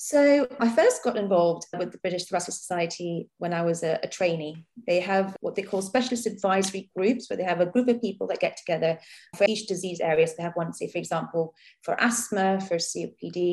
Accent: British